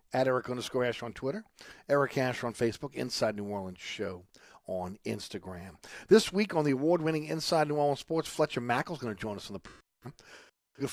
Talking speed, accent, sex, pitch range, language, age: 190 wpm, American, male, 105-150 Hz, English, 50-69